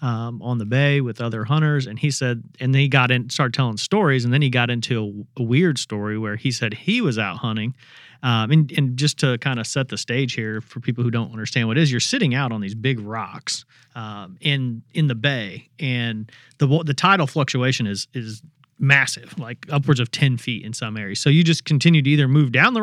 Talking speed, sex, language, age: 235 wpm, male, English, 40-59